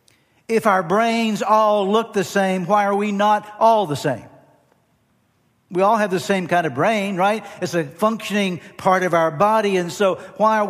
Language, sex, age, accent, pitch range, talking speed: English, male, 60-79, American, 170-205 Hz, 190 wpm